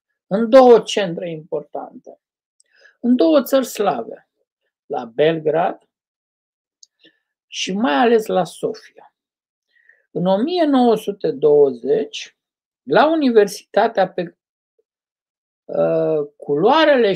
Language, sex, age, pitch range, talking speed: Romanian, male, 60-79, 180-260 Hz, 75 wpm